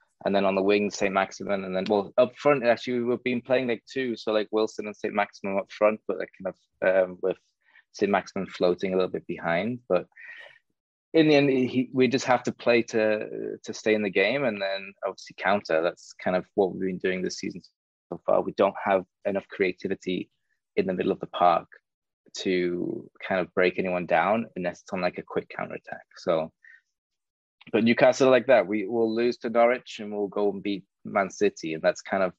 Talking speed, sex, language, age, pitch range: 215 wpm, male, English, 20-39, 95-115 Hz